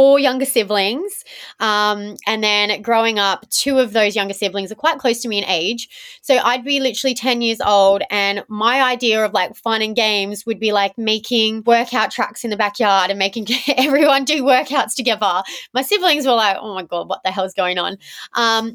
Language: English